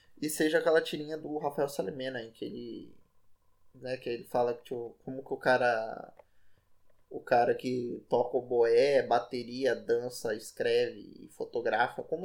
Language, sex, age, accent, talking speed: Portuguese, male, 10-29, Brazilian, 150 wpm